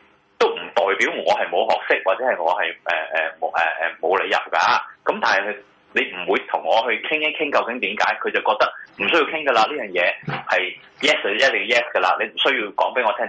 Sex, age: male, 30-49